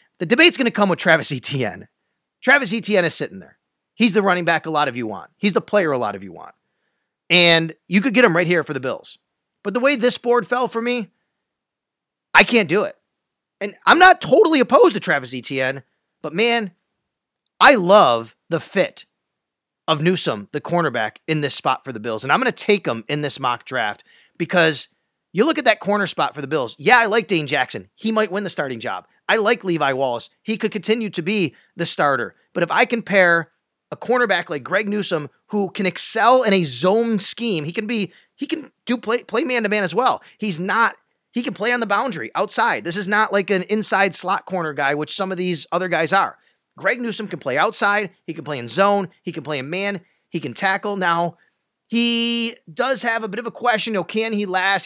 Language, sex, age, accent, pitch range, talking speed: English, male, 30-49, American, 165-225 Hz, 225 wpm